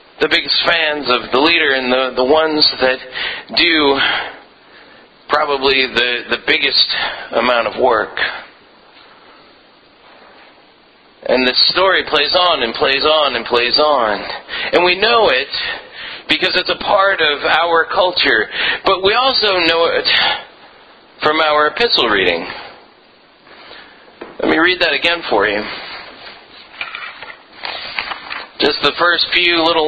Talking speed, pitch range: 125 wpm, 135-175 Hz